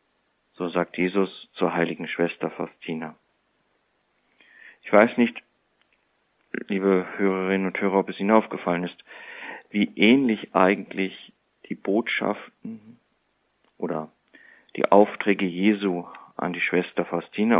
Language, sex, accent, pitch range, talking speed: German, male, German, 90-105 Hz, 110 wpm